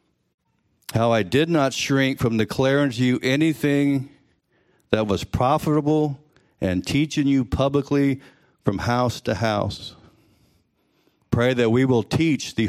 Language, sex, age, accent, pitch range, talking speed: English, male, 60-79, American, 100-130 Hz, 130 wpm